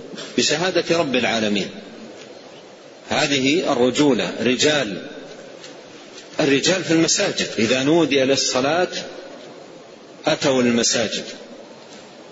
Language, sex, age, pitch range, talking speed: Arabic, male, 40-59, 125-155 Hz, 75 wpm